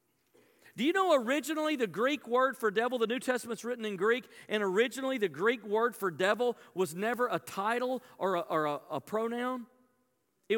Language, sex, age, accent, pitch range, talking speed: English, male, 40-59, American, 205-250 Hz, 175 wpm